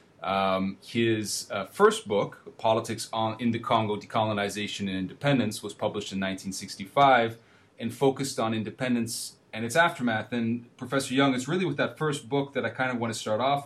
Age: 30-49